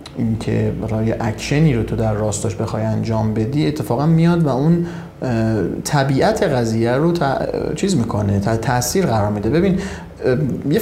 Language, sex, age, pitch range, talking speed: Persian, male, 30-49, 110-155 Hz, 145 wpm